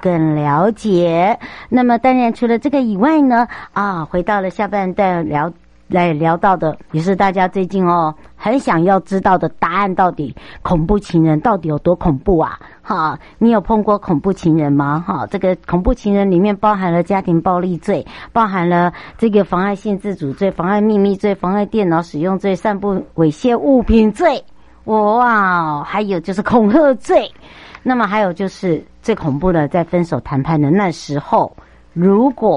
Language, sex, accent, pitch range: Chinese, male, American, 170-230 Hz